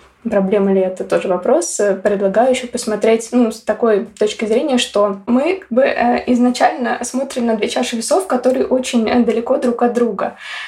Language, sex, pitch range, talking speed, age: Russian, female, 210-245 Hz, 155 wpm, 20-39